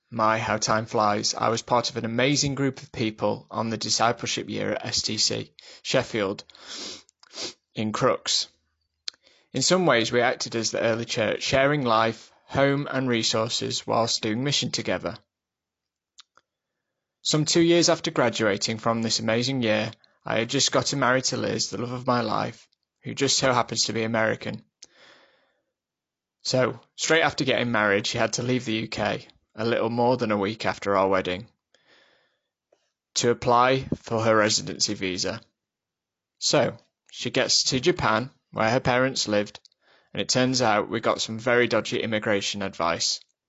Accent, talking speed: British, 155 wpm